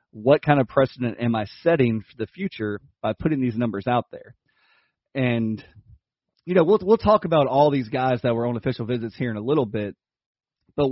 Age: 30-49